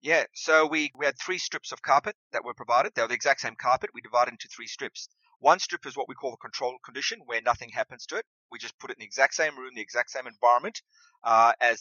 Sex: male